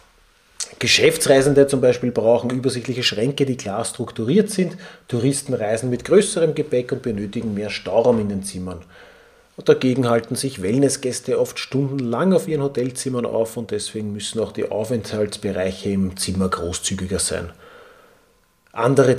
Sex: male